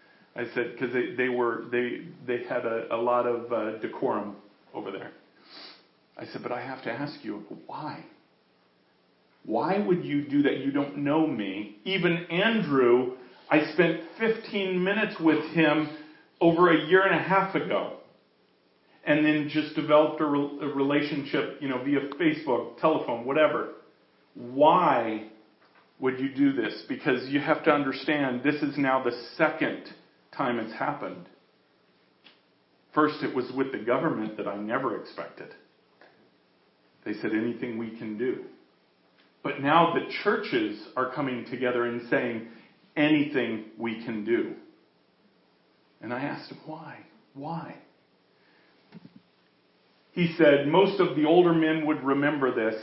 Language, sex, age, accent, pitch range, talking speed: English, male, 40-59, American, 120-160 Hz, 145 wpm